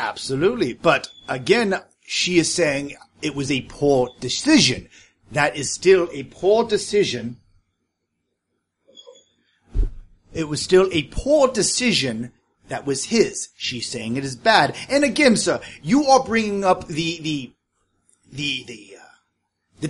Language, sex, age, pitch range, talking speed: English, male, 30-49, 165-270 Hz, 135 wpm